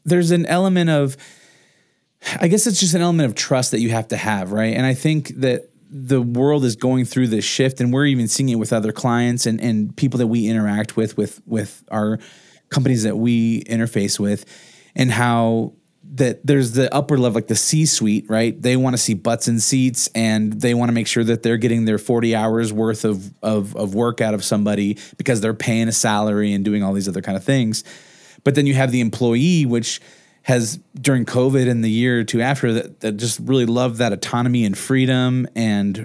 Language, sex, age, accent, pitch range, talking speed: English, male, 30-49, American, 110-135 Hz, 215 wpm